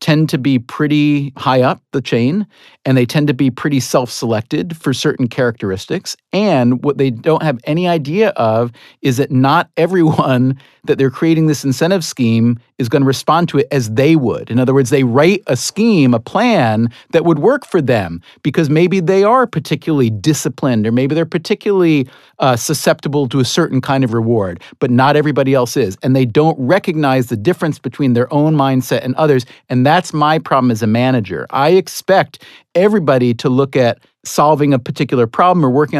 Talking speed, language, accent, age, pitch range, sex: 185 wpm, English, American, 40-59, 130-160 Hz, male